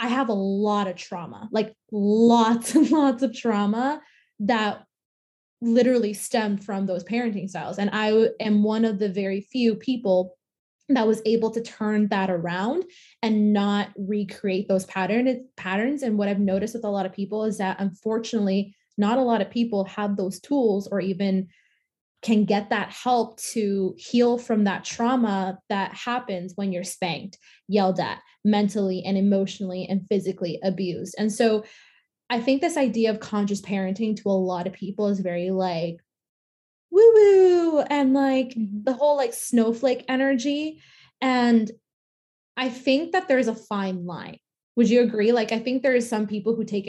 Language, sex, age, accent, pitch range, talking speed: English, female, 20-39, American, 195-240 Hz, 170 wpm